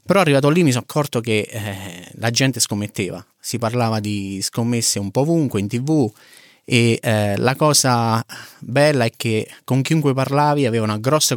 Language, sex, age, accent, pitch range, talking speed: Italian, male, 30-49, native, 110-135 Hz, 175 wpm